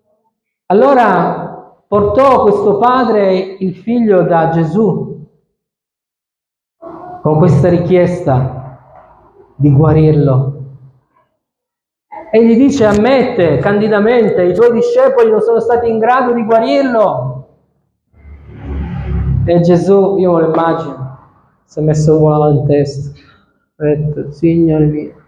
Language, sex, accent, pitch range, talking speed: Italian, male, native, 135-185 Hz, 105 wpm